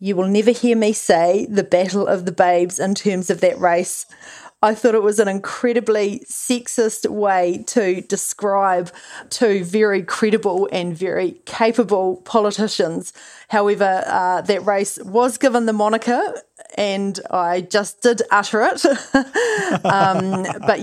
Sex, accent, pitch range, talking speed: female, Australian, 175-205 Hz, 140 wpm